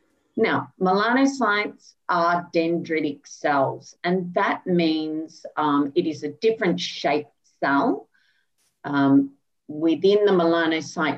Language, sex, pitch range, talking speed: English, female, 145-195 Hz, 100 wpm